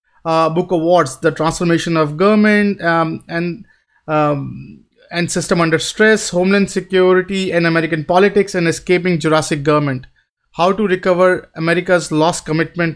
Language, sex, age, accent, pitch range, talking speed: English, male, 30-49, Indian, 155-185 Hz, 135 wpm